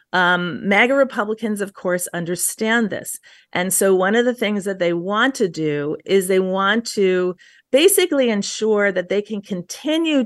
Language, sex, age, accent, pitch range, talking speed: English, female, 40-59, American, 175-225 Hz, 165 wpm